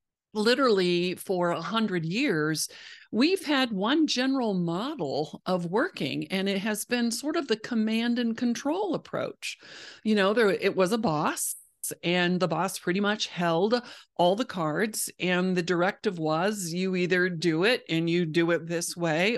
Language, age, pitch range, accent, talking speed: English, 50-69, 175-220 Hz, American, 160 wpm